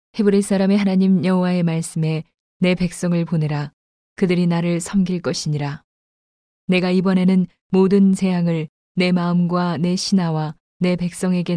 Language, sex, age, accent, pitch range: Korean, female, 20-39, native, 160-180 Hz